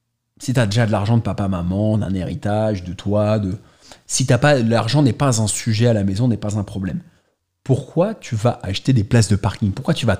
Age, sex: 30-49, male